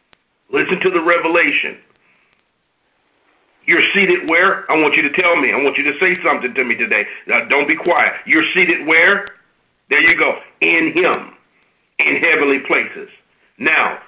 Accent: American